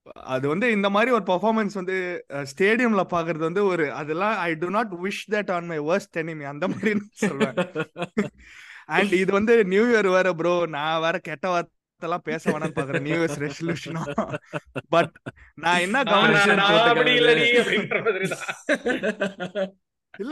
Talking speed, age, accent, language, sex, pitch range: 50 wpm, 20-39, native, Tamil, male, 150-200 Hz